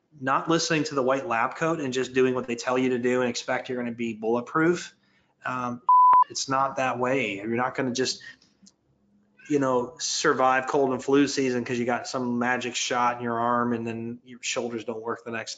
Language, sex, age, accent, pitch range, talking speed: English, male, 30-49, American, 115-125 Hz, 220 wpm